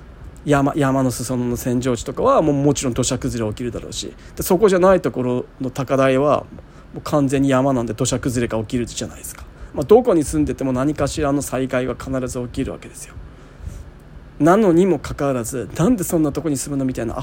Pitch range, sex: 125-160 Hz, male